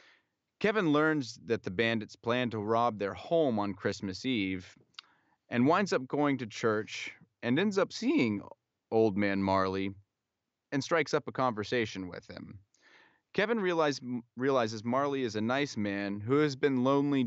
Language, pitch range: English, 95-125 Hz